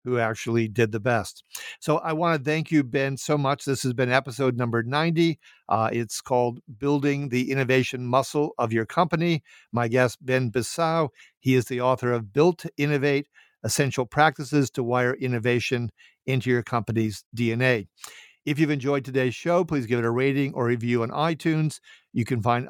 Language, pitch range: English, 120-145 Hz